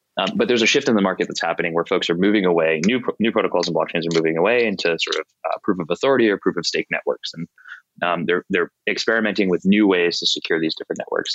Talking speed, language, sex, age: 255 wpm, English, male, 20-39